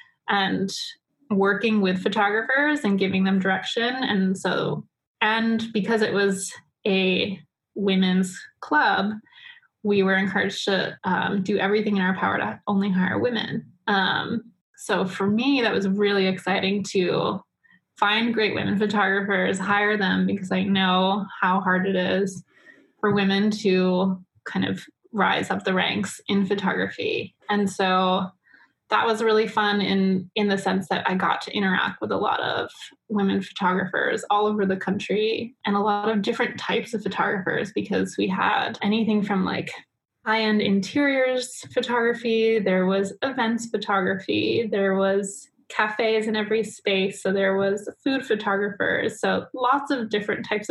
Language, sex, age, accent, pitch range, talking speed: English, female, 20-39, American, 195-225 Hz, 150 wpm